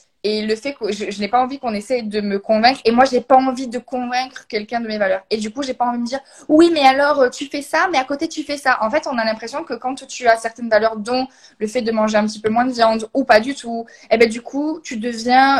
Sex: female